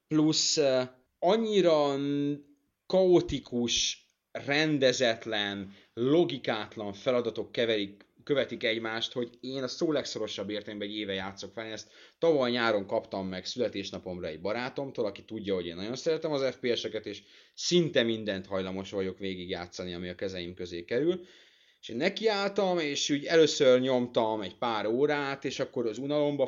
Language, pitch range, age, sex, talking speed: Hungarian, 105-135 Hz, 30-49, male, 135 wpm